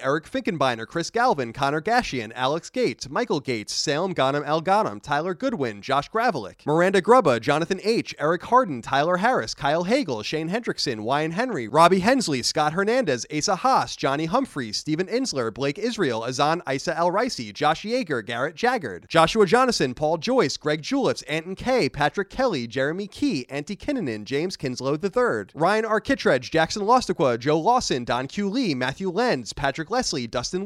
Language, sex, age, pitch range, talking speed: English, male, 30-49, 135-225 Hz, 165 wpm